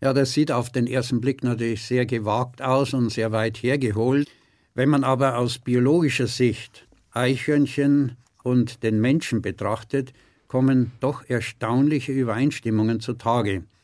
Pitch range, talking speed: 115-135 Hz, 135 wpm